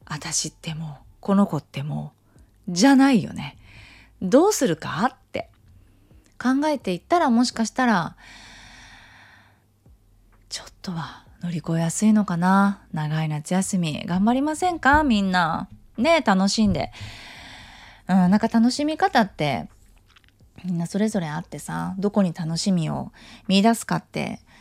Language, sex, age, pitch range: Japanese, female, 20-39, 150-215 Hz